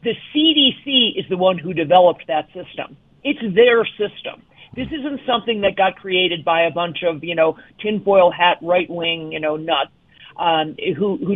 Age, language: 50-69, English